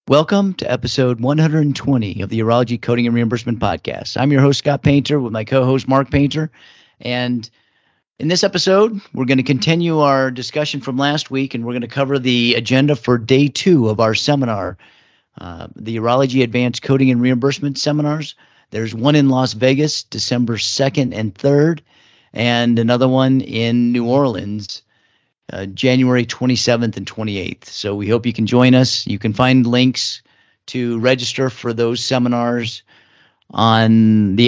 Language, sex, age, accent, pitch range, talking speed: English, male, 40-59, American, 115-140 Hz, 160 wpm